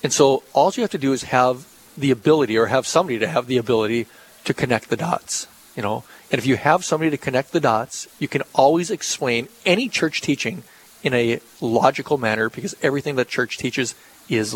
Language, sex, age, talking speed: English, male, 40-59, 205 wpm